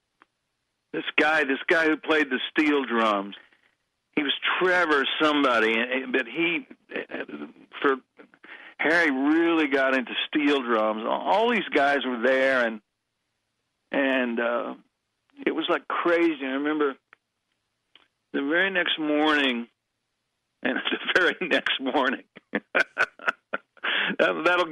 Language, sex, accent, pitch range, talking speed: English, male, American, 125-155 Hz, 110 wpm